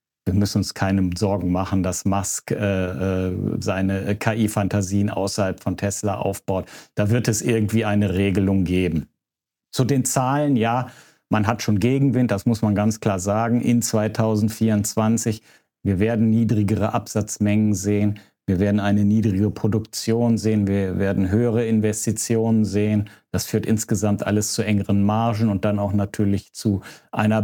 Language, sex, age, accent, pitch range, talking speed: German, male, 50-69, German, 105-115 Hz, 150 wpm